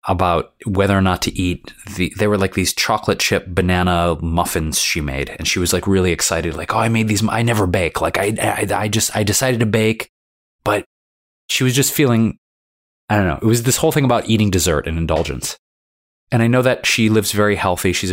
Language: English